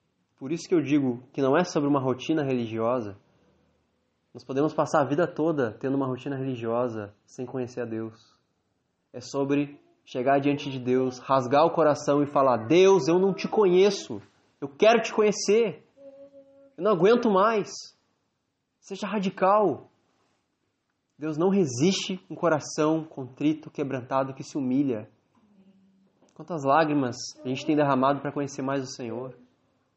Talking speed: 145 wpm